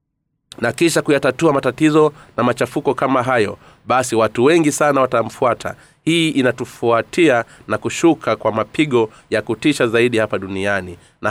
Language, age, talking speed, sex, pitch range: Swahili, 30-49, 135 wpm, male, 110-145 Hz